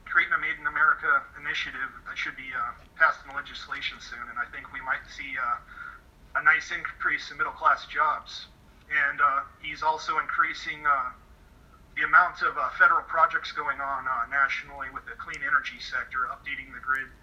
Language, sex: English, male